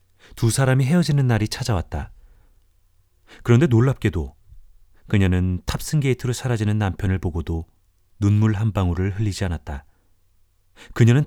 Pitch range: 90-110 Hz